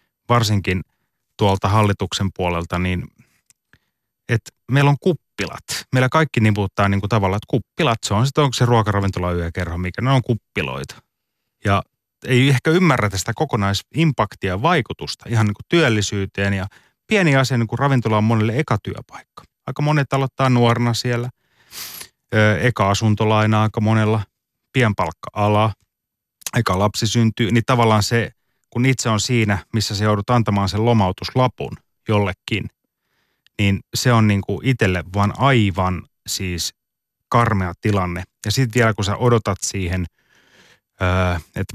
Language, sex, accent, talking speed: Finnish, male, native, 130 wpm